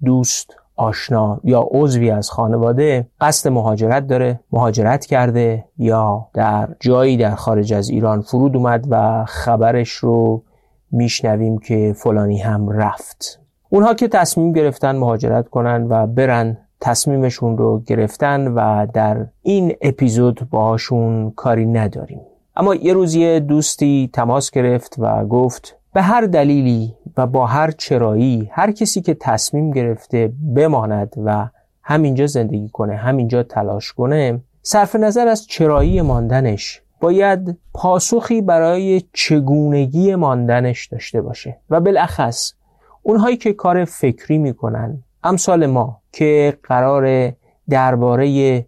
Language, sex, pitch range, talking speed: Persian, male, 110-150 Hz, 120 wpm